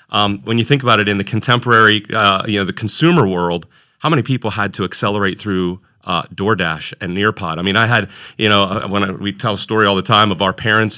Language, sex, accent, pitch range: English, male, American, 100-115 Hz